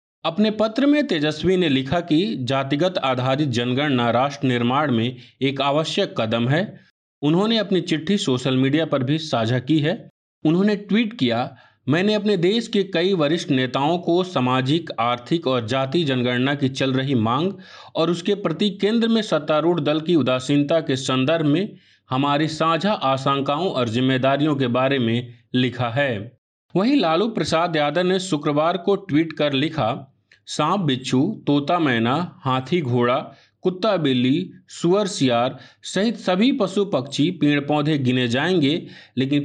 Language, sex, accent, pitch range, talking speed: Hindi, male, native, 130-175 Hz, 150 wpm